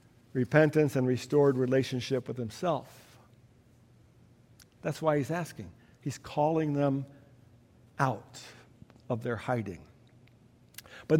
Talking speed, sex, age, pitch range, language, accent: 95 wpm, male, 60-79, 120-195 Hz, English, American